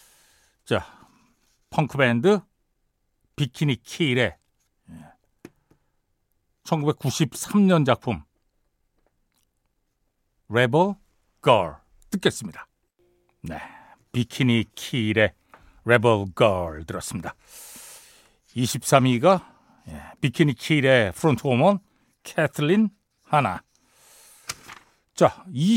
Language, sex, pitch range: Korean, male, 120-190 Hz